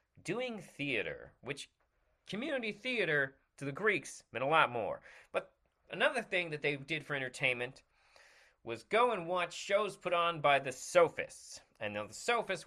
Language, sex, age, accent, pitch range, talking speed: English, male, 30-49, American, 135-210 Hz, 155 wpm